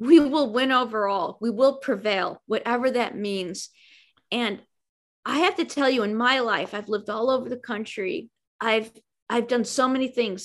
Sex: female